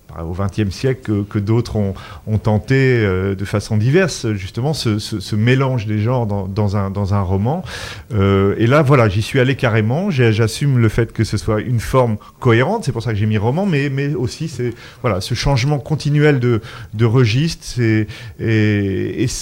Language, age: French, 40-59